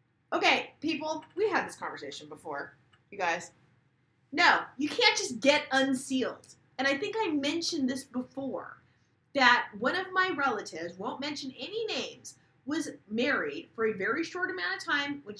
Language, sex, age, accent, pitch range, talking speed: English, female, 30-49, American, 245-370 Hz, 160 wpm